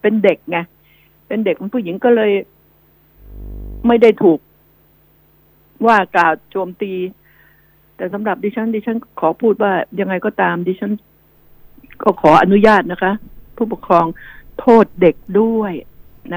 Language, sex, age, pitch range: Thai, female, 60-79, 190-245 Hz